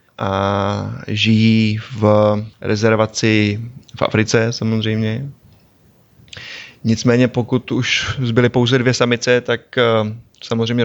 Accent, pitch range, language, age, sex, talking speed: native, 110-125 Hz, Czech, 20-39, male, 90 wpm